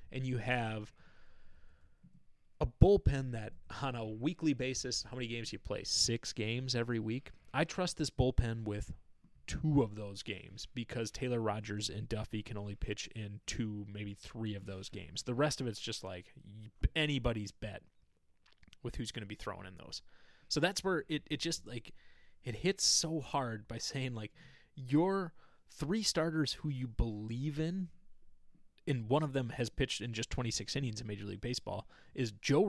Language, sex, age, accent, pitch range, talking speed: English, male, 20-39, American, 105-145 Hz, 180 wpm